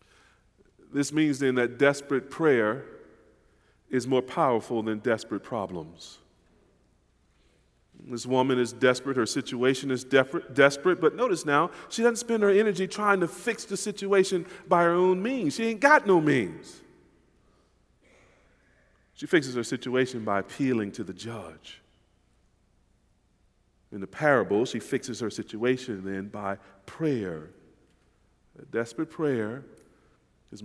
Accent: American